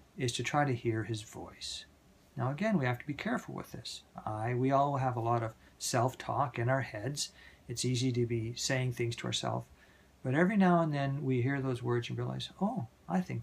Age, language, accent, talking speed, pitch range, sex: 50-69, English, American, 220 wpm, 110-140 Hz, male